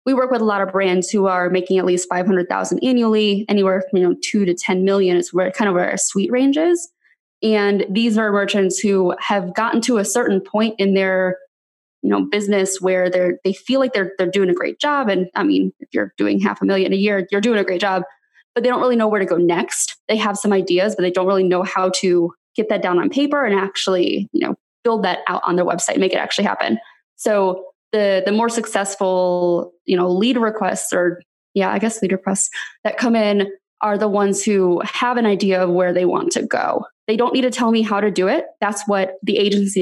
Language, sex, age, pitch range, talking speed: English, female, 20-39, 185-220 Hz, 240 wpm